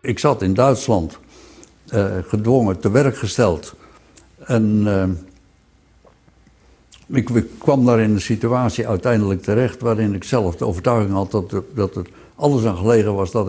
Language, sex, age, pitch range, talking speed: Dutch, male, 60-79, 95-125 Hz, 145 wpm